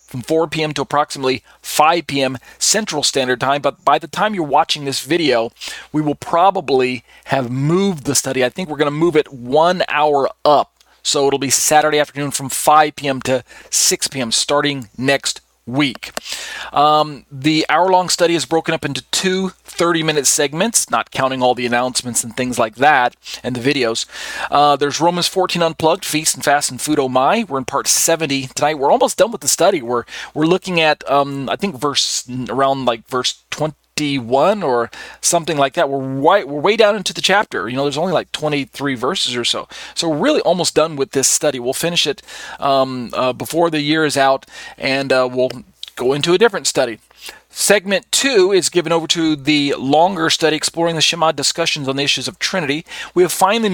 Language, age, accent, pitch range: English, 40-59, American, 135-165 Hz